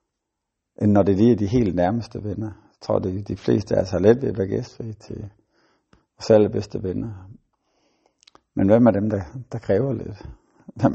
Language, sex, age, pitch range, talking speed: Danish, male, 60-79, 95-115 Hz, 195 wpm